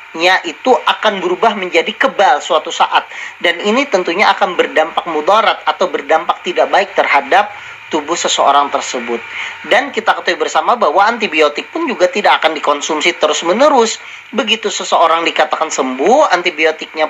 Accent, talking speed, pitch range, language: native, 140 wpm, 160-215 Hz, Indonesian